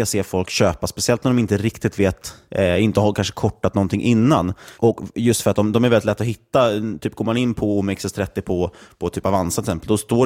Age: 30-49